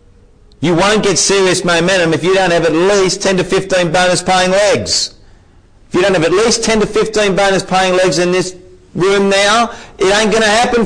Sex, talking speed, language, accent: male, 200 wpm, Spanish, Australian